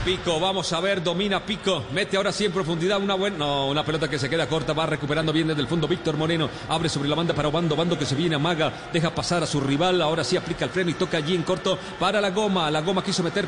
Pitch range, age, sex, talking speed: 175-235 Hz, 40-59, male, 275 wpm